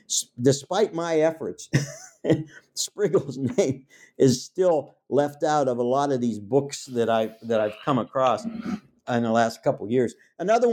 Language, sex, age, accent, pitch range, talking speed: English, male, 50-69, American, 125-170 Hz, 145 wpm